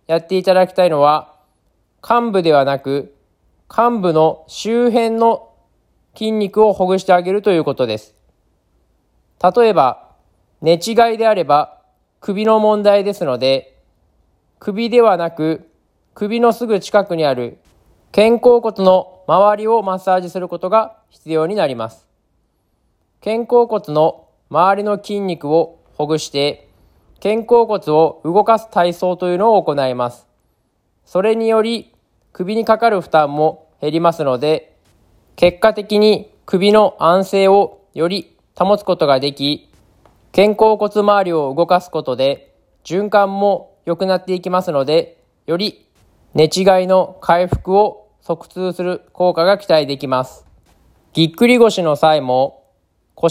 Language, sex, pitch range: Japanese, male, 145-210 Hz